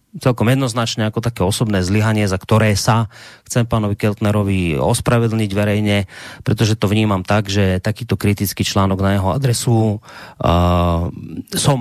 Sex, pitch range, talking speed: male, 105-125 Hz, 135 wpm